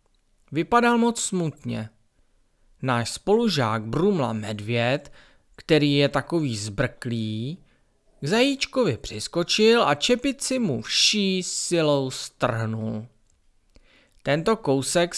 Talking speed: 85 wpm